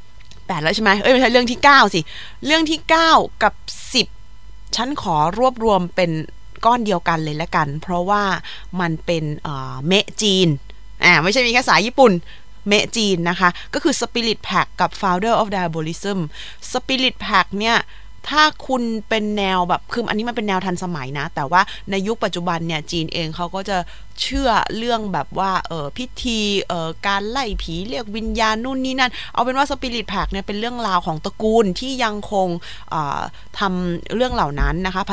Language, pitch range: Thai, 165-220 Hz